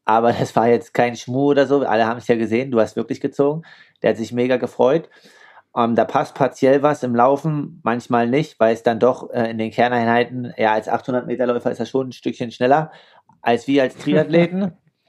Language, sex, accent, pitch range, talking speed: German, male, German, 115-135 Hz, 215 wpm